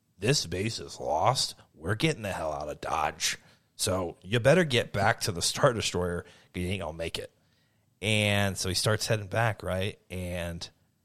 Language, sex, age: English, male, 30-49